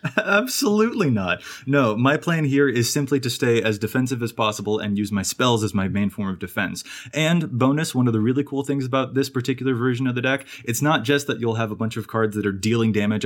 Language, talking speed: English, 240 wpm